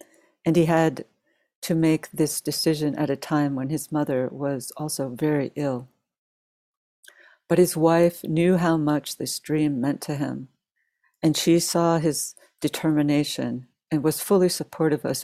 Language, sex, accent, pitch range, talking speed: English, female, American, 140-165 Hz, 145 wpm